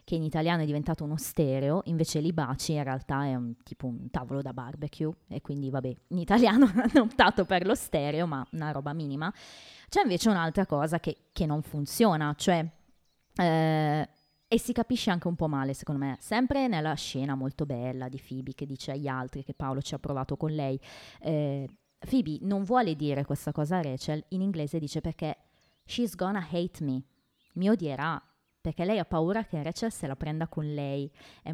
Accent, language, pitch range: native, Italian, 145-200 Hz